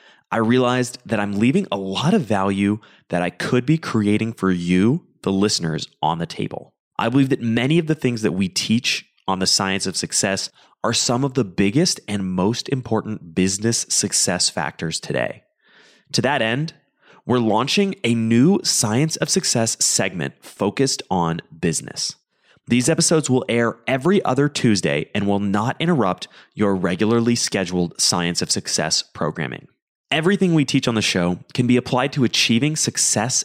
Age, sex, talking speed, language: 30-49, male, 165 wpm, English